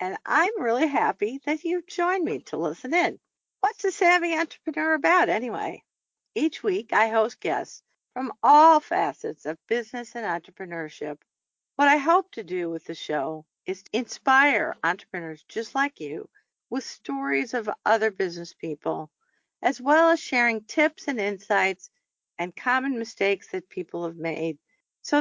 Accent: American